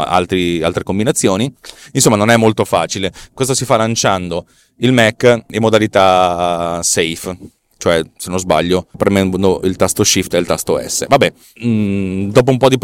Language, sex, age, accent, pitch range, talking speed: Italian, male, 30-49, native, 95-125 Hz, 155 wpm